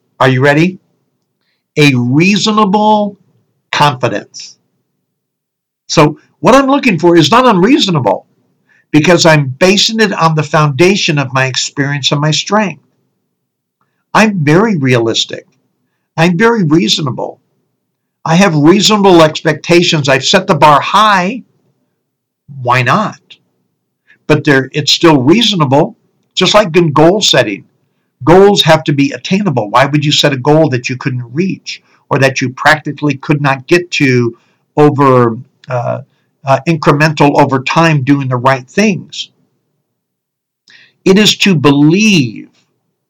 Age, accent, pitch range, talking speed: 60-79, American, 135-180 Hz, 125 wpm